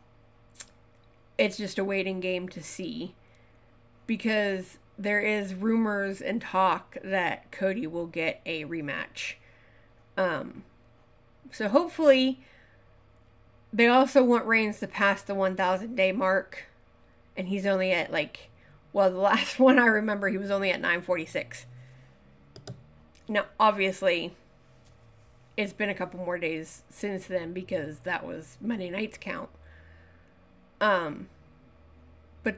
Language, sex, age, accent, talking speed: English, female, 30-49, American, 120 wpm